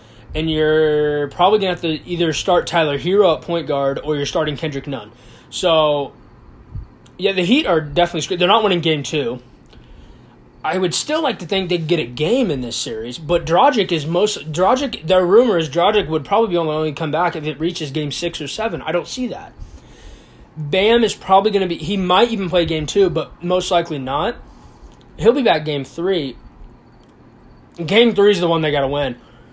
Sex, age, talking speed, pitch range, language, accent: male, 20-39, 200 wpm, 145-180 Hz, English, American